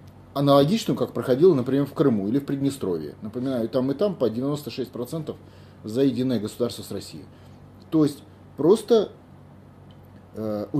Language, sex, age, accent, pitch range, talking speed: Russian, male, 30-49, native, 120-165 Hz, 135 wpm